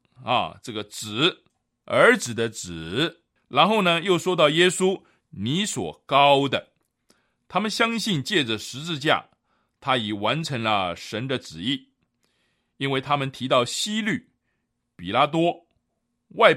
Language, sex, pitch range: Chinese, male, 120-180 Hz